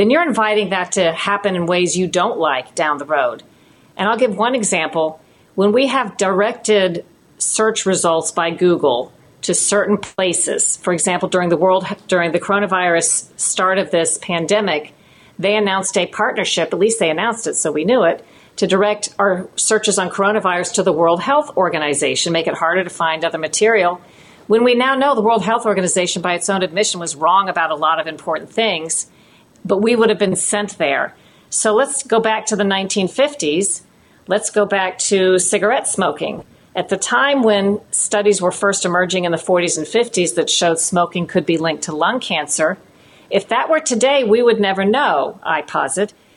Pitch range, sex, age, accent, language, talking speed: 175-210 Hz, female, 50-69, American, English, 185 wpm